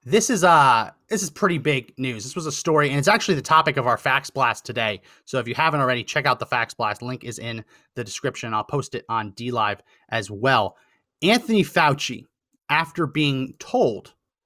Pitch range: 125-165 Hz